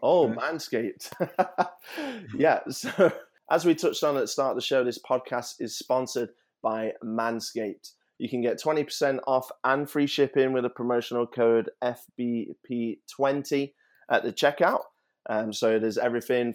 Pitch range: 110-130 Hz